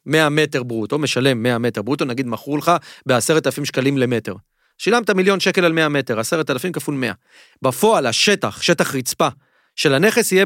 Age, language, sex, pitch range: 40-59, Hebrew, male, 135-180 Hz